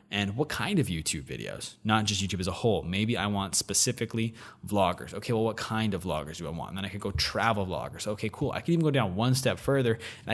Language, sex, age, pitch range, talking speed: English, male, 20-39, 100-125 Hz, 255 wpm